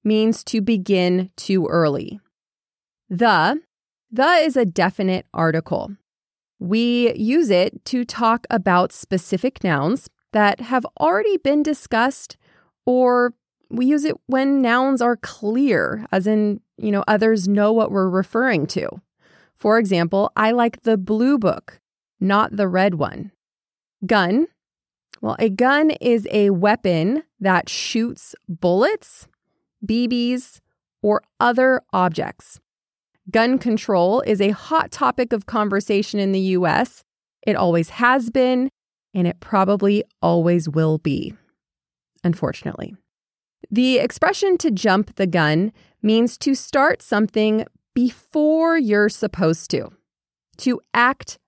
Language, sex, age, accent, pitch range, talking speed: English, female, 20-39, American, 190-245 Hz, 120 wpm